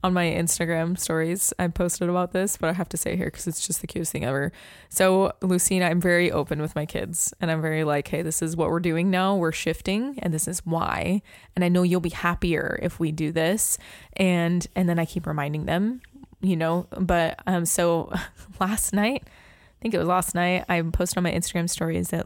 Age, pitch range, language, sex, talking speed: 20-39, 160-185 Hz, English, female, 225 wpm